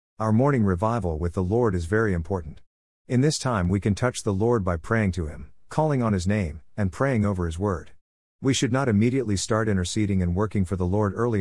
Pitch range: 90-115 Hz